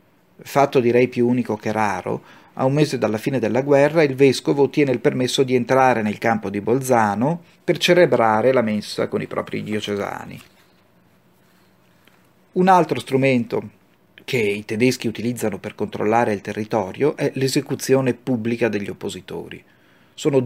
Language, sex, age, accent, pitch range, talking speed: Italian, male, 30-49, native, 105-135 Hz, 145 wpm